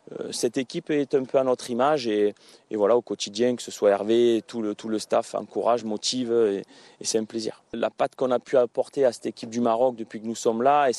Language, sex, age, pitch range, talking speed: Arabic, male, 30-49, 110-130 Hz, 245 wpm